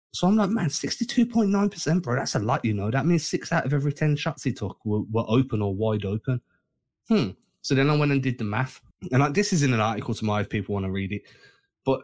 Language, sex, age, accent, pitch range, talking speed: English, male, 20-39, British, 105-135 Hz, 260 wpm